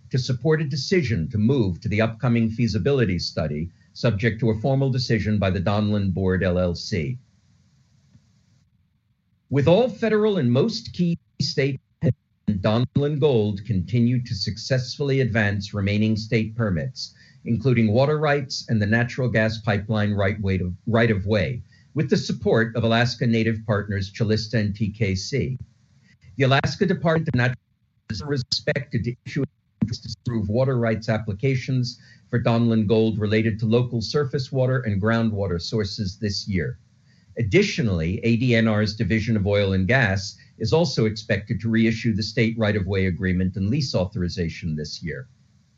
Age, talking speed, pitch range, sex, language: 50-69, 145 wpm, 105-130 Hz, male, English